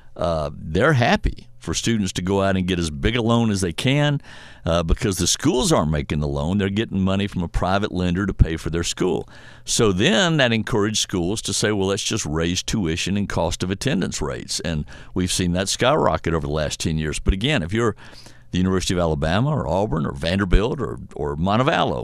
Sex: male